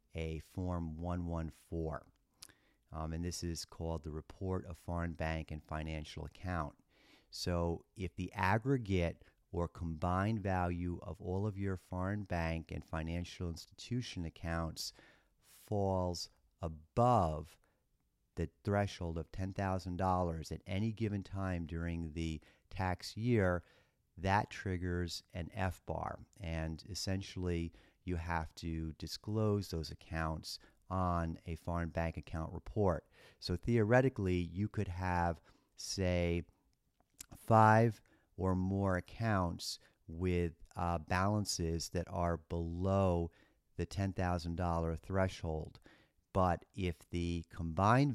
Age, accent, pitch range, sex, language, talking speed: 40-59, American, 85-95 Hz, male, English, 115 wpm